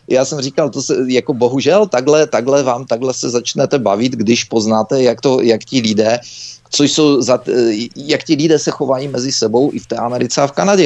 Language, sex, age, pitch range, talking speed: Czech, male, 40-59, 105-125 Hz, 205 wpm